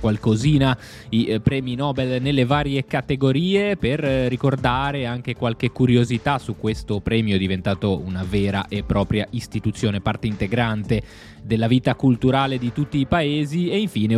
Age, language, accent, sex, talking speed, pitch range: 20-39, Italian, native, male, 135 wpm, 110-140 Hz